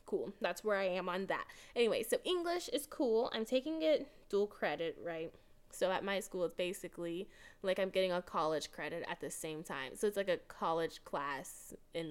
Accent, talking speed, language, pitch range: American, 205 wpm, English, 190-280 Hz